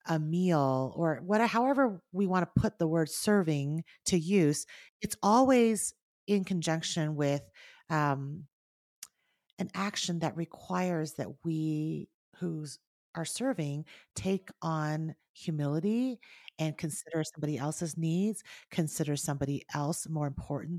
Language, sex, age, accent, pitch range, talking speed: English, female, 30-49, American, 155-195 Hz, 120 wpm